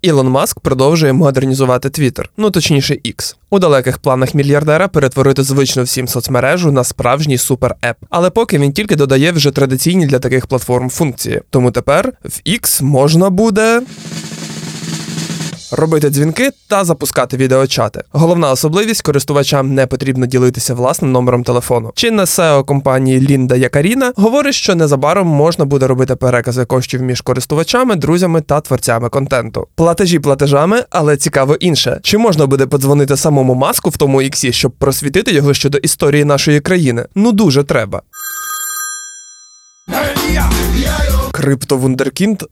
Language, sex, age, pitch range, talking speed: Ukrainian, male, 20-39, 130-170 Hz, 135 wpm